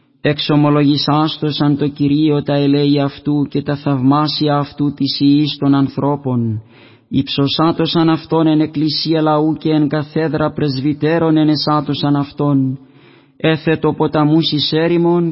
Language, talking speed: Greek, 120 wpm